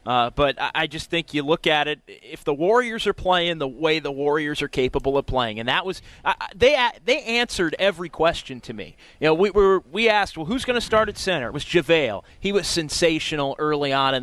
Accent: American